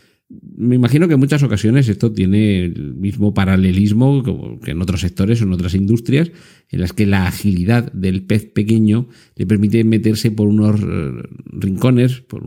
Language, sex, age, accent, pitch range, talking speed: Spanish, male, 50-69, Spanish, 95-115 Hz, 170 wpm